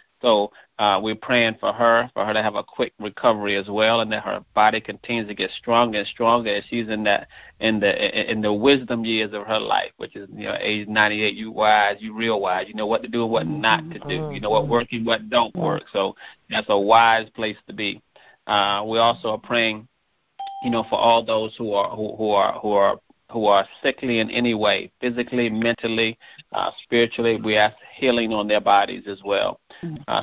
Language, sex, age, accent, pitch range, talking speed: English, male, 30-49, American, 105-115 Hz, 220 wpm